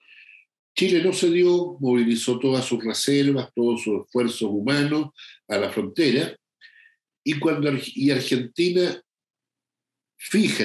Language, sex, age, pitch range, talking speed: Spanish, male, 60-79, 115-185 Hz, 105 wpm